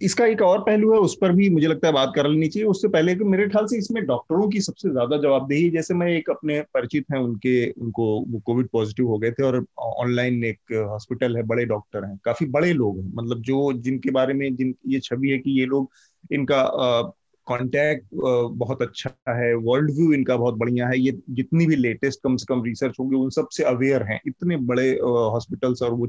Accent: native